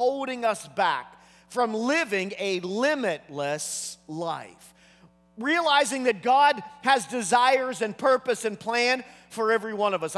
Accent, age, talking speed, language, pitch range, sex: American, 40-59, 130 wpm, English, 220-275 Hz, male